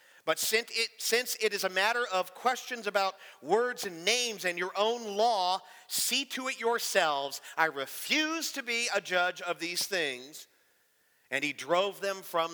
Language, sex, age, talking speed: English, male, 50-69, 170 wpm